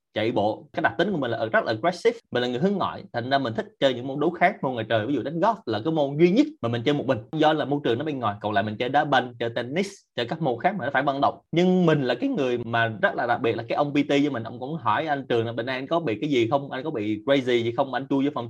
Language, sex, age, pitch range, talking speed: Vietnamese, male, 20-39, 115-165 Hz, 345 wpm